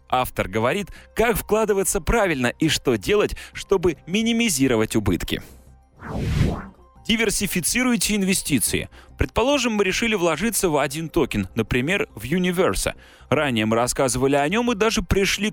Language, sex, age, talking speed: Russian, male, 30-49, 120 wpm